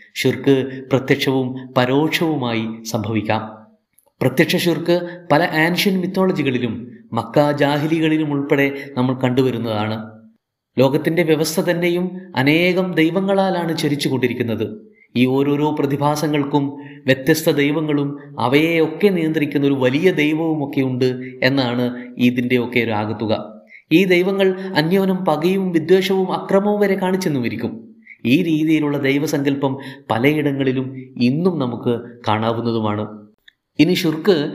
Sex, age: male, 20-39